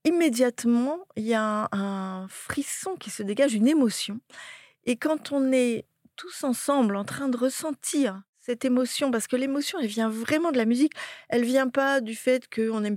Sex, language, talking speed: female, French, 190 wpm